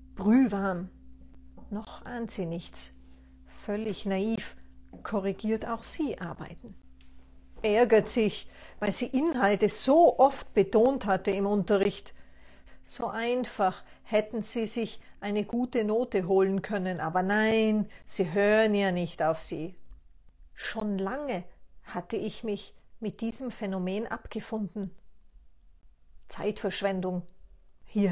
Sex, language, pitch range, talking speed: female, German, 175-225 Hz, 110 wpm